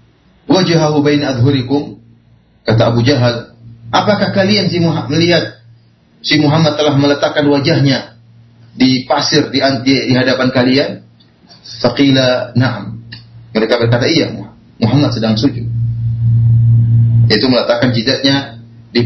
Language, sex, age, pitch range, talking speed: Malay, male, 30-49, 115-150 Hz, 110 wpm